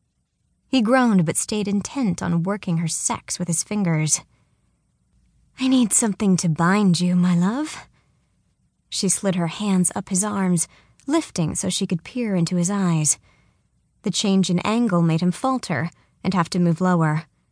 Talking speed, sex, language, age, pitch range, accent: 160 wpm, female, English, 20-39, 165-195 Hz, American